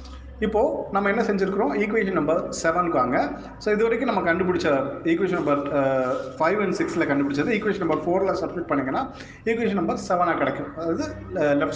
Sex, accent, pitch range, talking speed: male, native, 140-180 Hz, 155 wpm